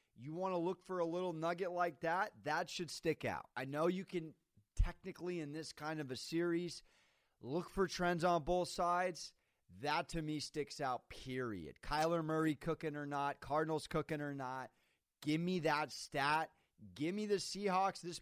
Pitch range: 125-170 Hz